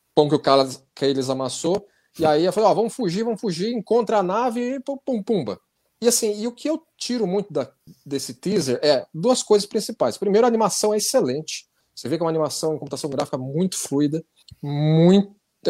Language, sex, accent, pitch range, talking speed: Portuguese, male, Brazilian, 135-190 Hz, 210 wpm